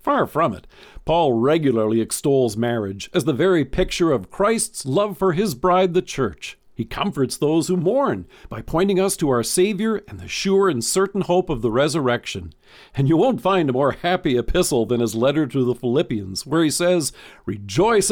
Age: 50-69